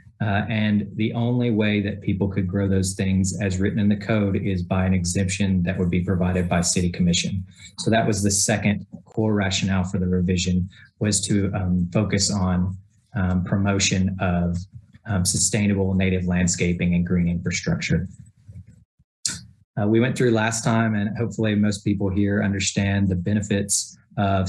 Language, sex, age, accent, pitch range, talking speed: English, male, 30-49, American, 95-105 Hz, 165 wpm